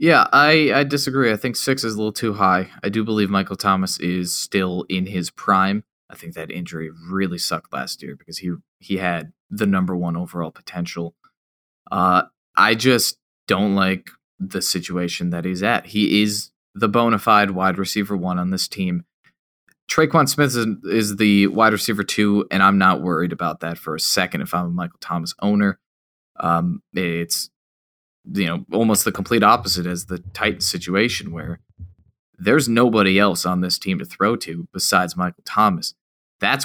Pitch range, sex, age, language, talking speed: 90-110 Hz, male, 20-39, English, 180 wpm